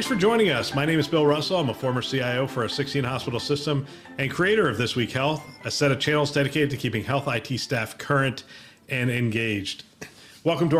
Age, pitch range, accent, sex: 40-59, 115-145 Hz, American, male